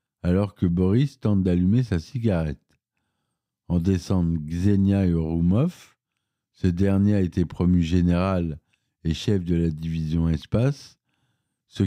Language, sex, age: French, male, 50-69